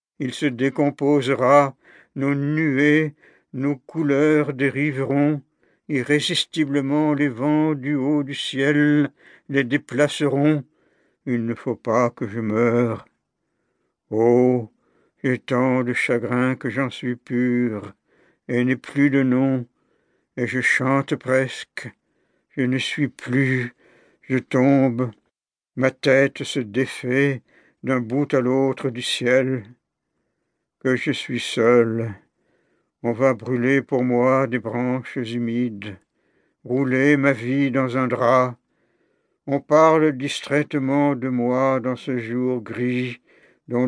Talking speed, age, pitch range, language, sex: 120 wpm, 60-79, 125-145 Hz, French, male